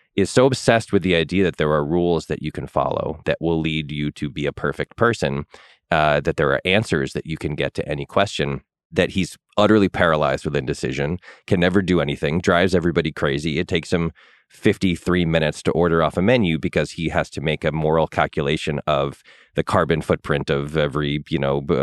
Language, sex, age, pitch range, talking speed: English, male, 30-49, 75-95 Hz, 205 wpm